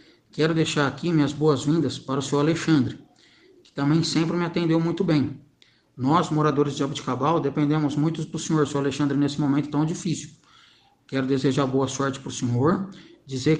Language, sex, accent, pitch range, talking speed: Portuguese, male, Brazilian, 135-155 Hz, 170 wpm